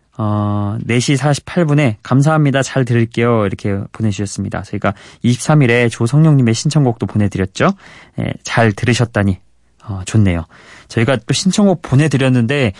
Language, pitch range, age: Korean, 105-140 Hz, 20-39